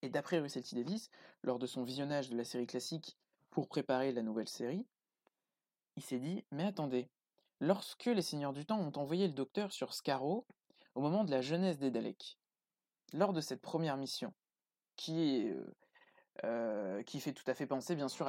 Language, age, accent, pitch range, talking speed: French, 20-39, French, 125-155 Hz, 190 wpm